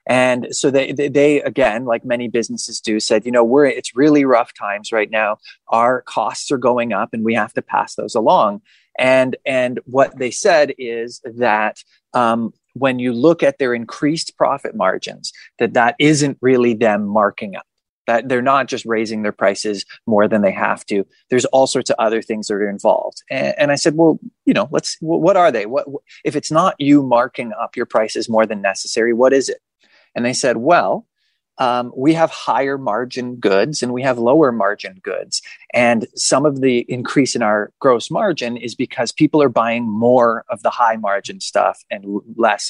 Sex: male